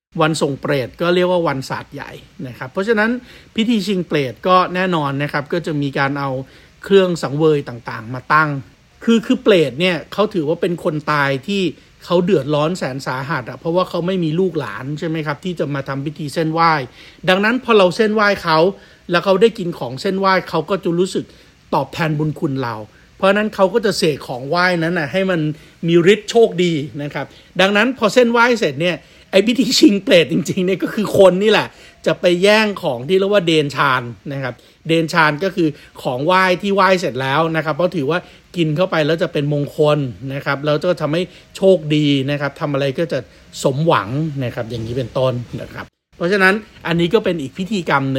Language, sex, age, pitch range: Thai, male, 60-79, 145-190 Hz